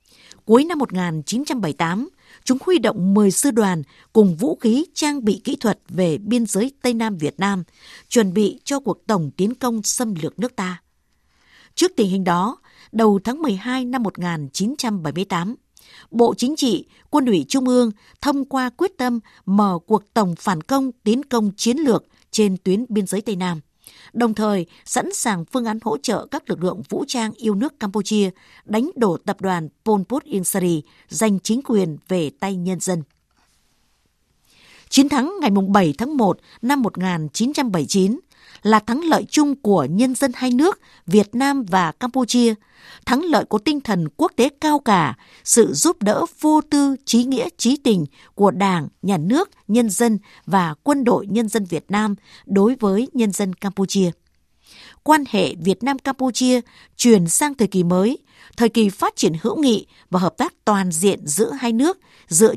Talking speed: 175 wpm